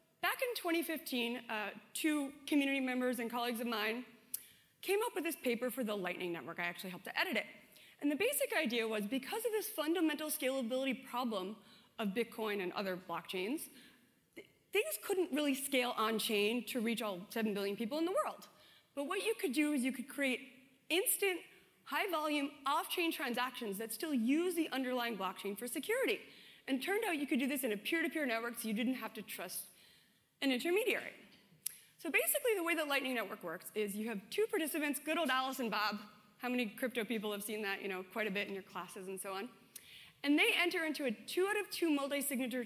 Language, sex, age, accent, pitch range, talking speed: English, female, 30-49, American, 215-305 Hz, 205 wpm